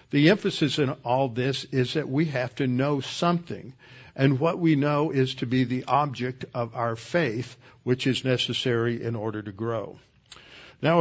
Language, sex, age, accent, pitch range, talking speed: English, male, 60-79, American, 120-145 Hz, 175 wpm